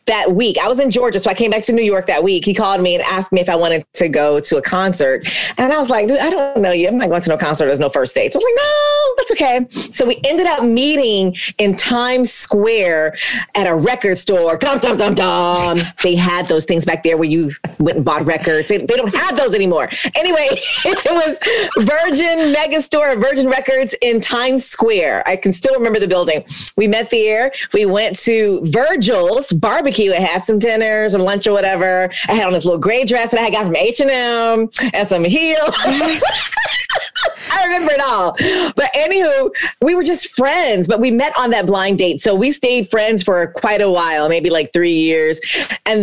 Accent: American